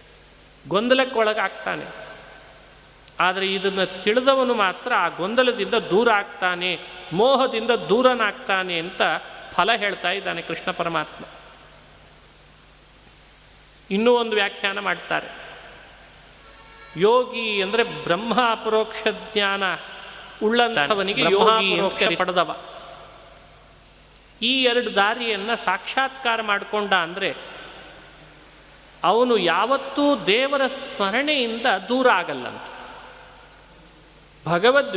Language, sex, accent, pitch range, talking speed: Kannada, male, native, 190-240 Hz, 75 wpm